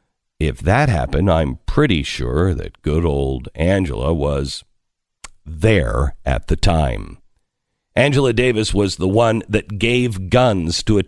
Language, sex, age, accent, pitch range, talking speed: English, male, 50-69, American, 95-140 Hz, 135 wpm